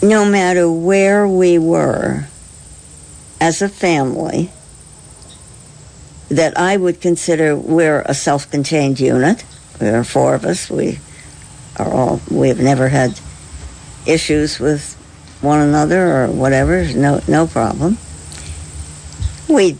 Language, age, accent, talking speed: English, 60-79, American, 115 wpm